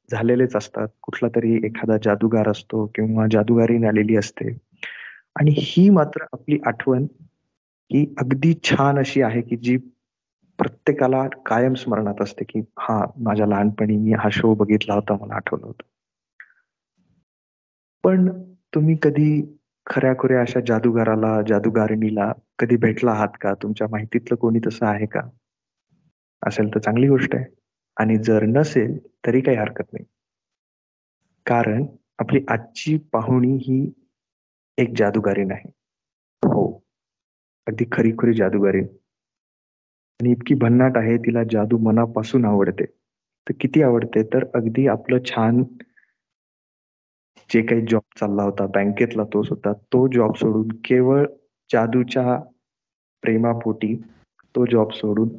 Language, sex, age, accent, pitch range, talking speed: Marathi, male, 30-49, native, 105-130 Hz, 120 wpm